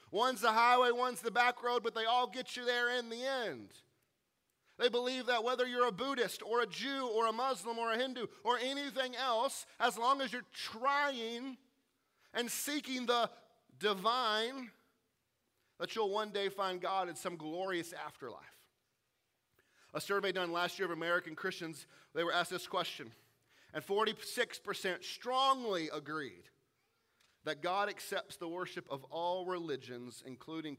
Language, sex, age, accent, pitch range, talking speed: English, male, 40-59, American, 175-240 Hz, 155 wpm